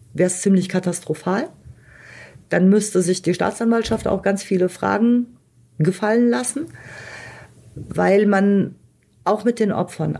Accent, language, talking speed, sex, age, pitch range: German, German, 125 wpm, female, 40-59, 180-220 Hz